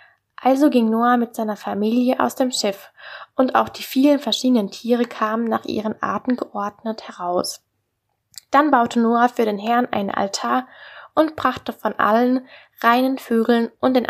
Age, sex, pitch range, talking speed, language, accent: 10-29, female, 215-255 Hz, 160 wpm, German, German